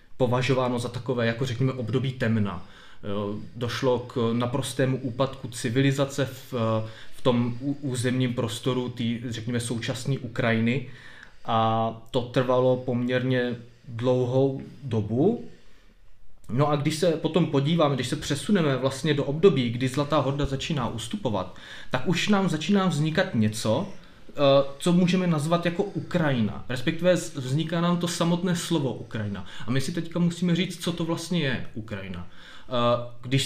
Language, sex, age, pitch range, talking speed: Czech, male, 20-39, 120-155 Hz, 135 wpm